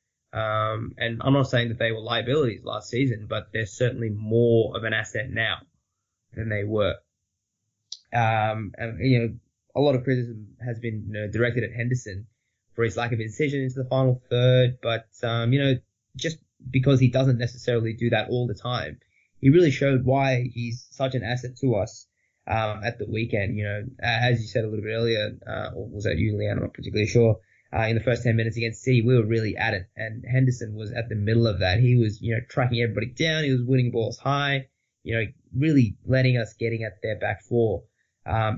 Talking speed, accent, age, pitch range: 215 wpm, Australian, 20-39, 110-130 Hz